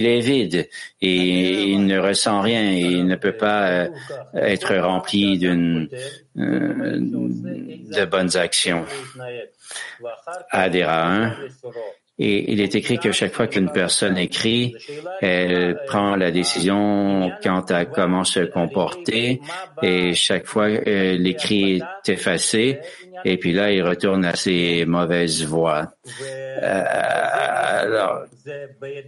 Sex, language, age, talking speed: male, English, 60-79, 120 wpm